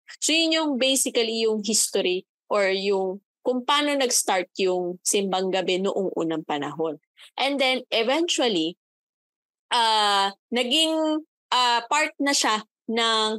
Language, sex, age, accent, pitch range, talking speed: Filipino, female, 20-39, native, 190-250 Hz, 120 wpm